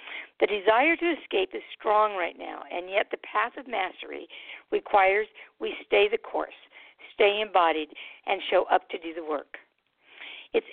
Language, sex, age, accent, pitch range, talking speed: English, female, 50-69, American, 180-295 Hz, 160 wpm